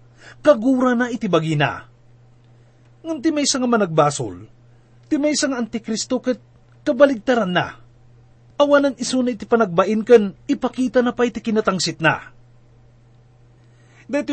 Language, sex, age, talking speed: English, male, 30-49, 110 wpm